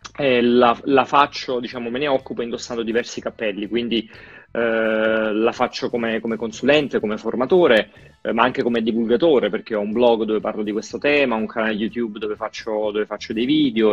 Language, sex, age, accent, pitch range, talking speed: Italian, male, 30-49, native, 110-125 Hz, 180 wpm